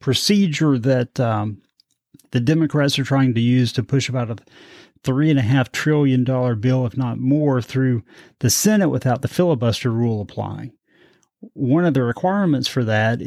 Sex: male